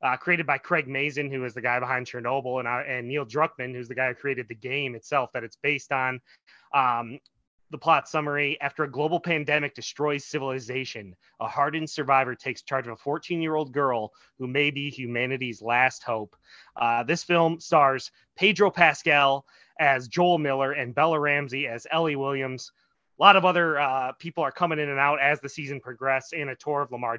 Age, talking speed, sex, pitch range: 20-39, 195 wpm, male, 125-155 Hz